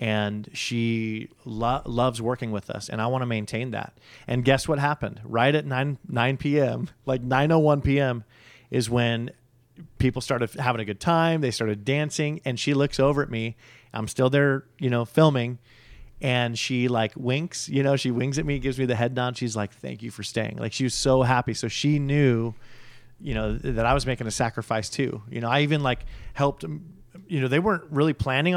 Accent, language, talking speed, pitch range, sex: American, English, 210 wpm, 115-135 Hz, male